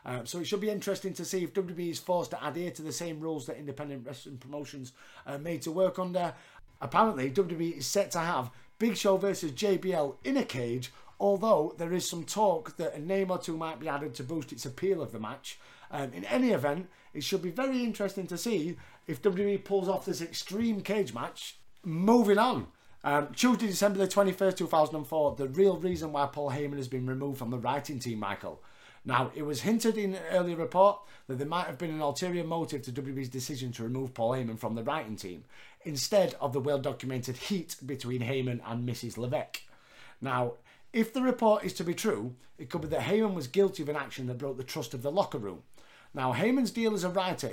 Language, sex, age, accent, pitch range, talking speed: English, male, 30-49, British, 135-195 Hz, 215 wpm